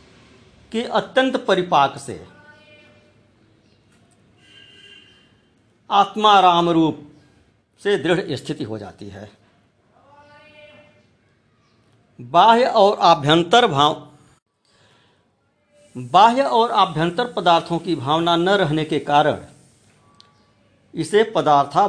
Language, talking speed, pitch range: Hindi, 75 wpm, 115-180 Hz